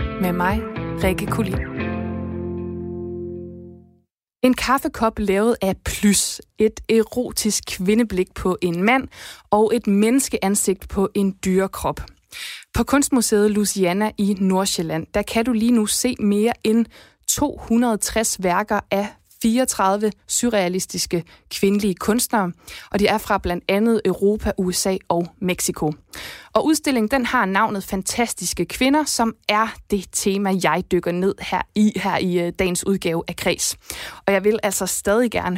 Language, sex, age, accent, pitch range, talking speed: Danish, female, 20-39, native, 185-220 Hz, 130 wpm